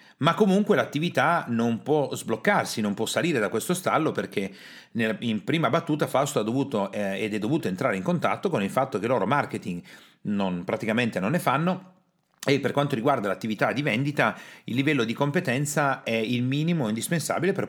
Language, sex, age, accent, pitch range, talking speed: Italian, male, 40-59, native, 110-160 Hz, 185 wpm